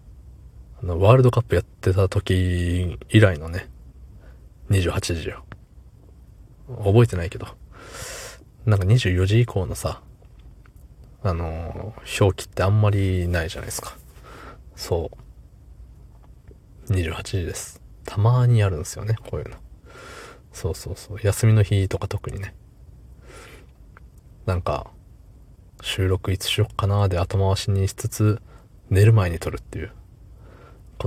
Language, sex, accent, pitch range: Japanese, male, native, 90-105 Hz